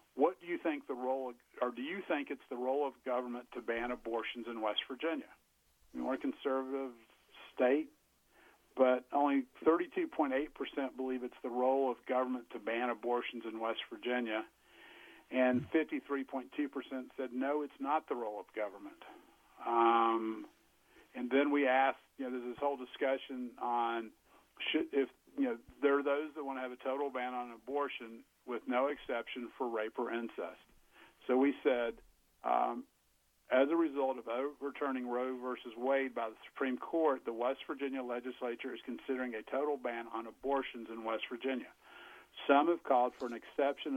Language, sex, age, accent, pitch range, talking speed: English, male, 50-69, American, 120-140 Hz, 165 wpm